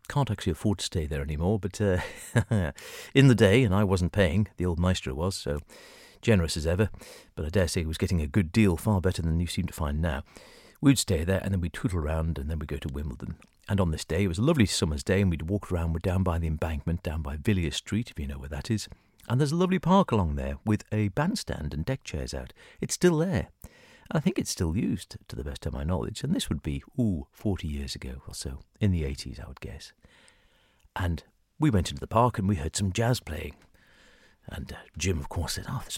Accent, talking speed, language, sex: British, 250 wpm, English, male